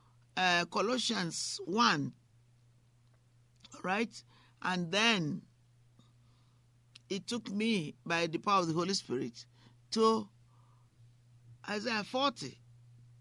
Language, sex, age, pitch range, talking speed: English, male, 50-69, 120-190 Hz, 85 wpm